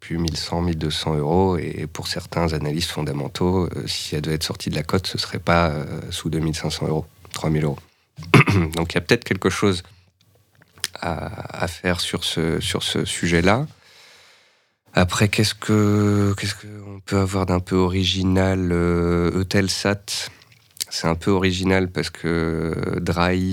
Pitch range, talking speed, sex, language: 85-95 Hz, 155 wpm, male, French